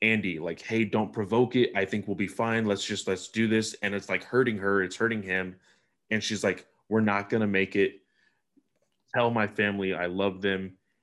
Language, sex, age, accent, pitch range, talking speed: English, male, 20-39, American, 95-115 Hz, 205 wpm